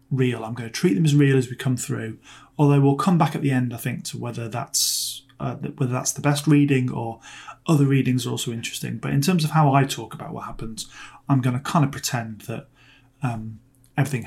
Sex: male